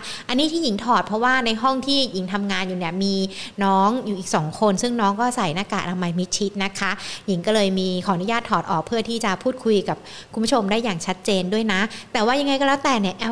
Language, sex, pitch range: Thai, female, 195-235 Hz